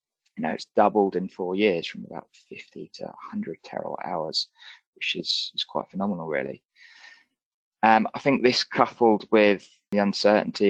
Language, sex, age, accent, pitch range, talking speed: English, male, 20-39, British, 95-115 Hz, 155 wpm